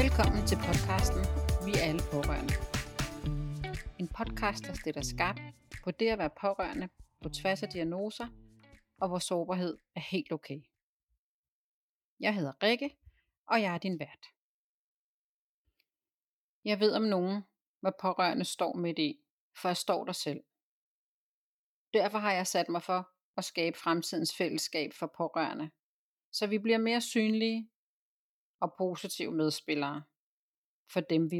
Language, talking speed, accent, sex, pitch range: Danish, 140 wpm, native, female, 150-205 Hz